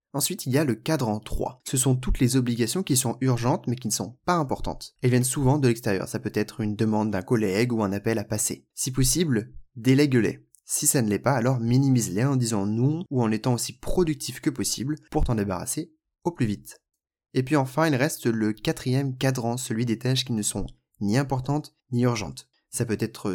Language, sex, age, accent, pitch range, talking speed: French, male, 20-39, French, 105-130 Hz, 220 wpm